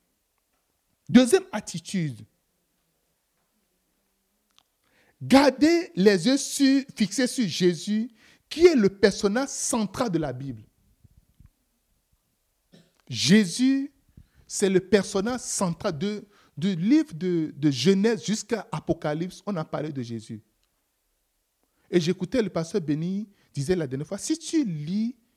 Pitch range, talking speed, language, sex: 165-245 Hz, 115 wpm, French, male